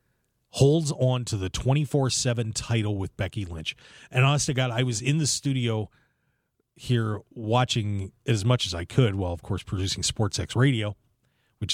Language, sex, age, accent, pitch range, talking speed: English, male, 40-59, American, 100-130 Hz, 160 wpm